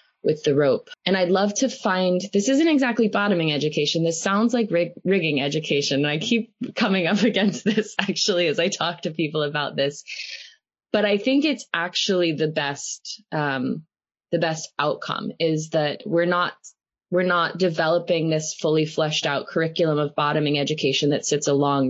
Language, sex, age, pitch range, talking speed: English, female, 20-39, 150-205 Hz, 170 wpm